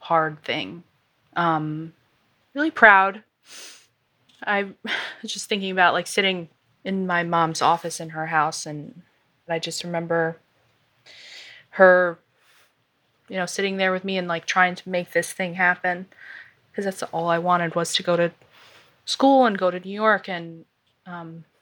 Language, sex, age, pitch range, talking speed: English, female, 20-39, 160-190 Hz, 155 wpm